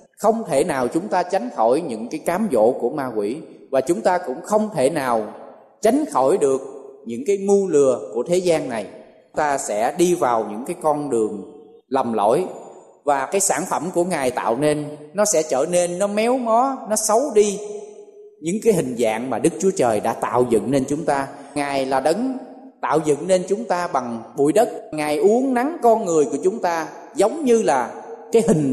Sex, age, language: male, 20-39, Vietnamese